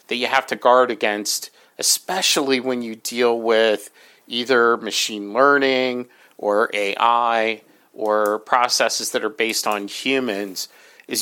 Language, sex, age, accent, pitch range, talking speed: English, male, 40-59, American, 110-135 Hz, 130 wpm